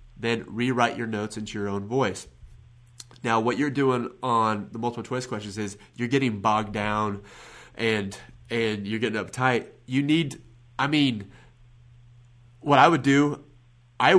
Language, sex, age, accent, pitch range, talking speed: English, male, 30-49, American, 110-135 Hz, 150 wpm